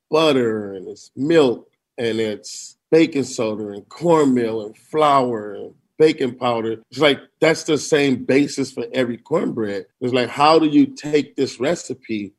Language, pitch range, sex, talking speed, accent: English, 115-145 Hz, male, 155 wpm, American